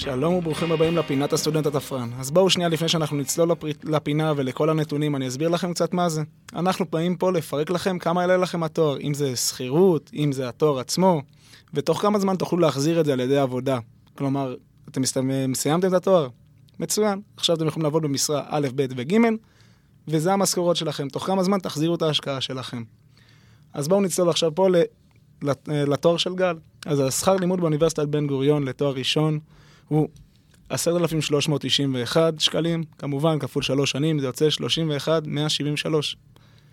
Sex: male